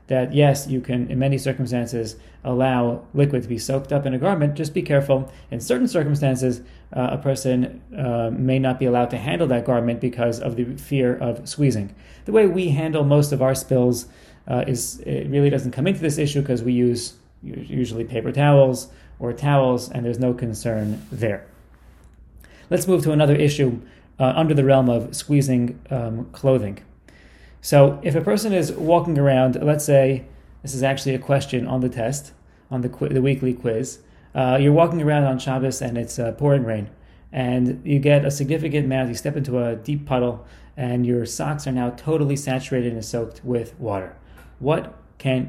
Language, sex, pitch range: English, male, 120-145 Hz